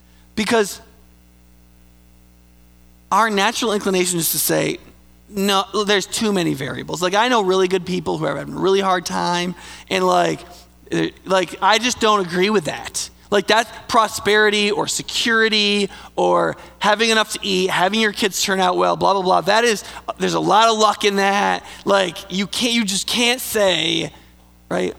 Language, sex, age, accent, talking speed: English, male, 20-39, American, 170 wpm